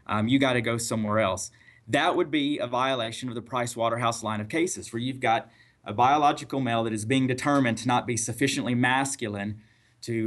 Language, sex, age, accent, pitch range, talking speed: English, male, 30-49, American, 115-130 Hz, 200 wpm